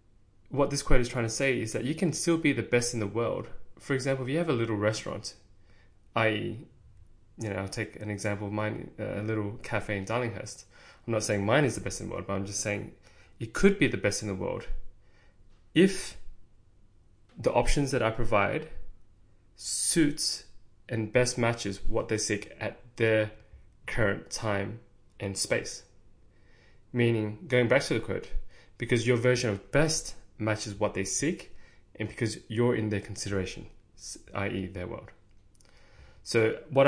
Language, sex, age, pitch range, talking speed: English, male, 20-39, 100-120 Hz, 175 wpm